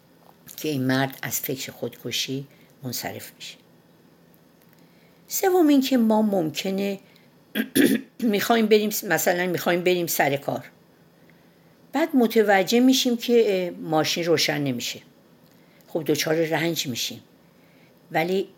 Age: 50-69